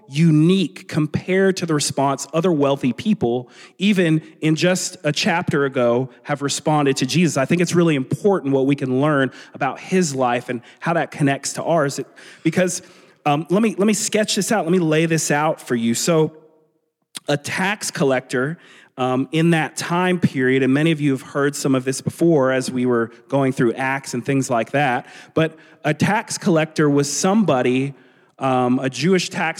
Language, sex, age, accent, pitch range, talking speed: English, male, 30-49, American, 130-170 Hz, 180 wpm